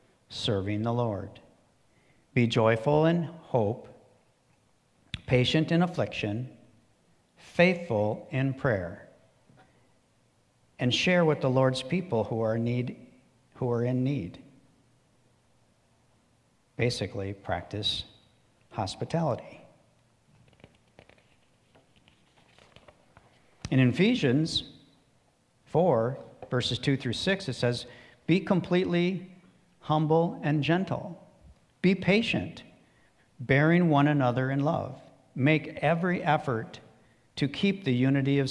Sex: male